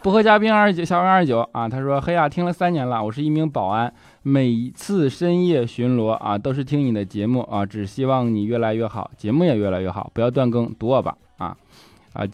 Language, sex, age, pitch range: Chinese, male, 20-39, 110-175 Hz